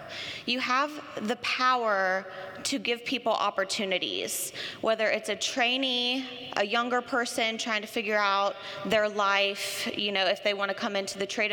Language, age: English, 20-39